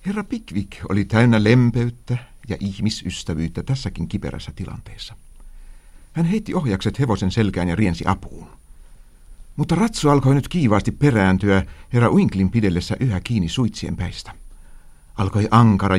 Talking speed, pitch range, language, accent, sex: 125 wpm, 85-120 Hz, Finnish, native, male